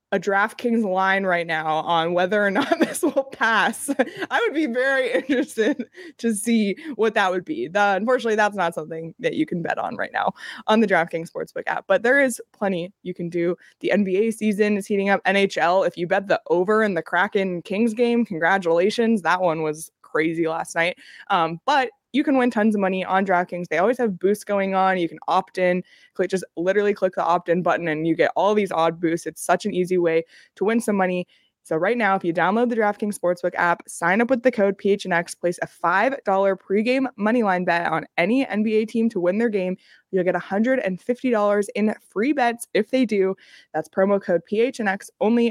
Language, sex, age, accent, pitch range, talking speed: English, female, 20-39, American, 180-235 Hz, 210 wpm